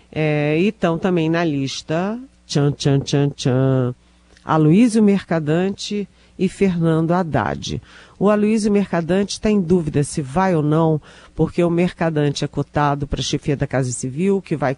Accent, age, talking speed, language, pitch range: Brazilian, 40-59, 150 wpm, Portuguese, 140-180 Hz